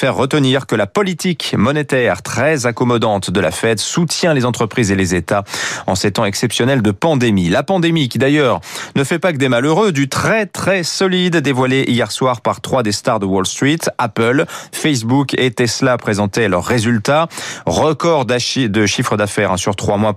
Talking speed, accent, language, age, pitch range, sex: 180 wpm, French, French, 30-49, 110-150 Hz, male